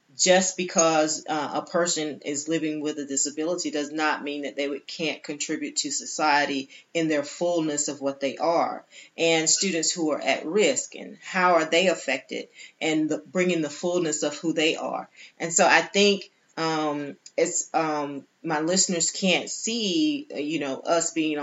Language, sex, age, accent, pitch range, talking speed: English, female, 30-49, American, 145-170 Hz, 170 wpm